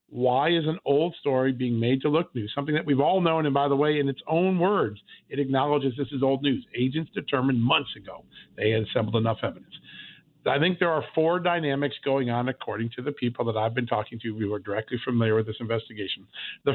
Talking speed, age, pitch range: 225 wpm, 50-69, 120-150 Hz